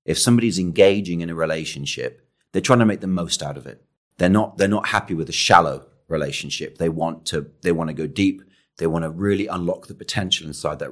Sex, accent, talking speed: male, British, 225 wpm